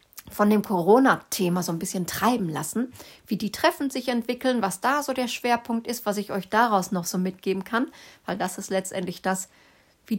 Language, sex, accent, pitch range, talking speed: German, female, German, 195-255 Hz, 195 wpm